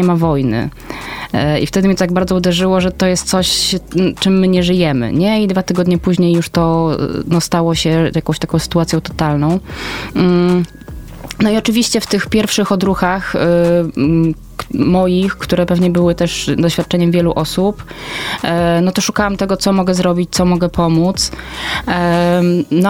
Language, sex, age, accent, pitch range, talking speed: Polish, female, 20-39, native, 170-190 Hz, 150 wpm